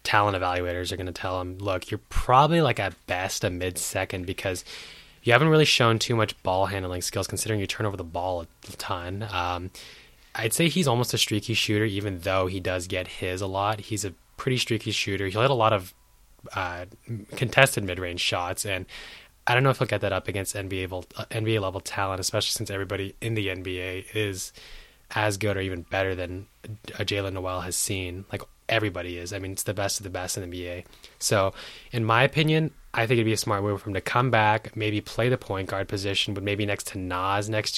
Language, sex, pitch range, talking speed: English, male, 95-110 Hz, 220 wpm